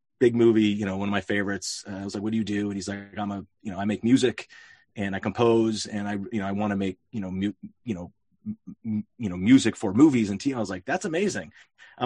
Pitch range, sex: 105-140 Hz, male